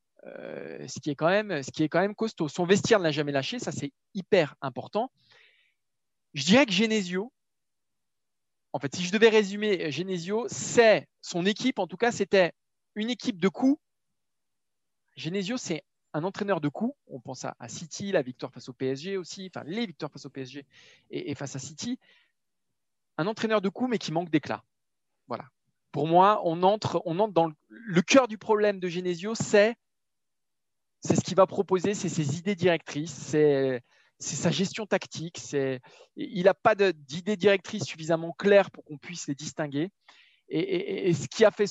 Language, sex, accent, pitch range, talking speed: French, male, French, 155-210 Hz, 185 wpm